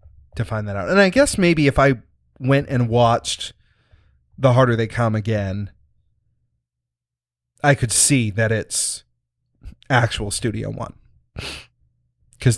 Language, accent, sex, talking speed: English, American, male, 130 wpm